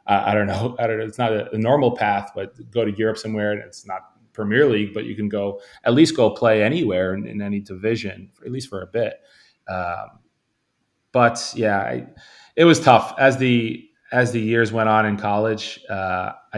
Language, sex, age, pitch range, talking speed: English, male, 20-39, 100-110 Hz, 215 wpm